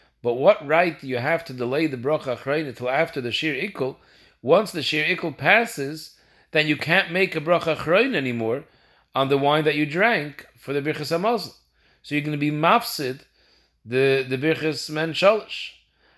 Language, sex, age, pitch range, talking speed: English, male, 40-59, 130-160 Hz, 185 wpm